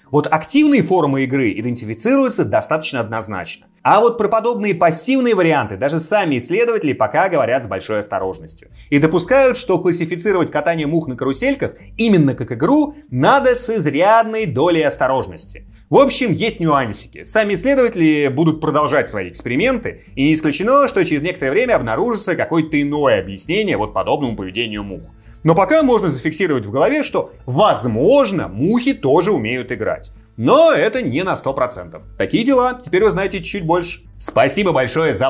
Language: Russian